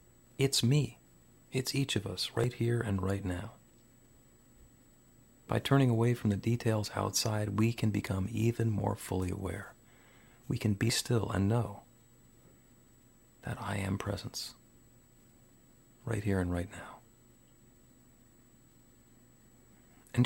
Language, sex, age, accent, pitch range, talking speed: English, male, 40-59, American, 100-125 Hz, 120 wpm